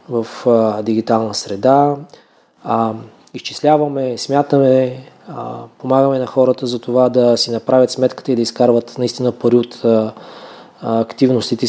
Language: Bulgarian